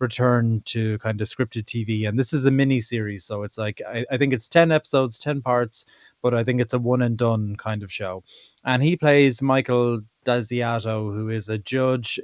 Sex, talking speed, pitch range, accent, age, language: male, 210 wpm, 115-135 Hz, Irish, 20-39, English